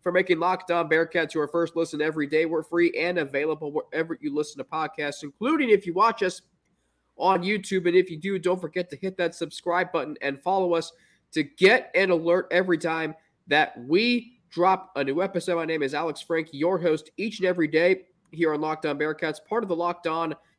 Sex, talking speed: male, 205 wpm